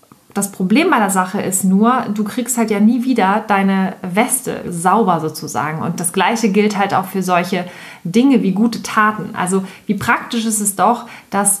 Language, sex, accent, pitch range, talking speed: German, female, German, 195-235 Hz, 185 wpm